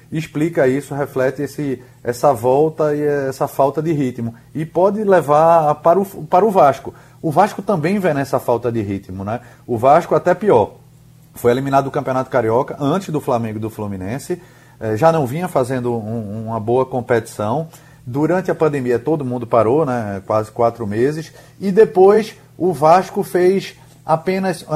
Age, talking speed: 30-49, 155 wpm